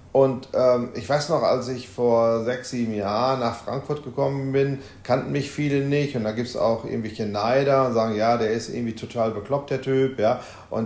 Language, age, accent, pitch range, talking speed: German, 40-59, German, 115-155 Hz, 210 wpm